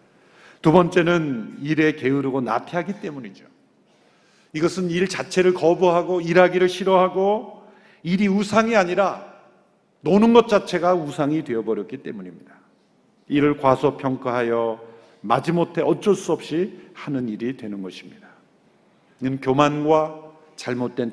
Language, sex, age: Korean, male, 50-69